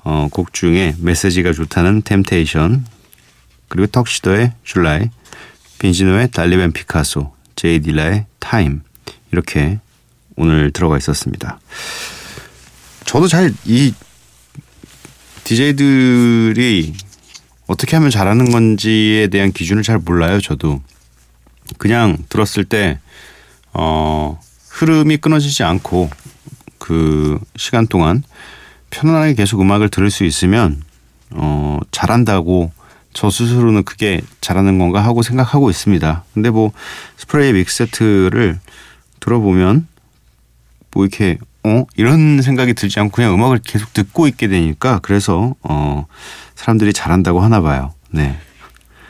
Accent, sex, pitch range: native, male, 80-115 Hz